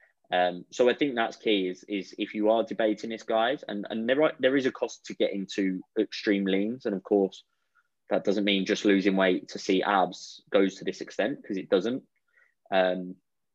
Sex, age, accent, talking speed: male, 20-39, British, 210 wpm